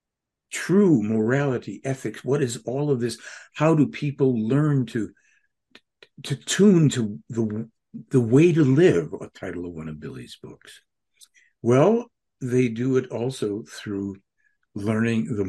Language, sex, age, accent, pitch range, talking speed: English, male, 60-79, American, 95-135 Hz, 140 wpm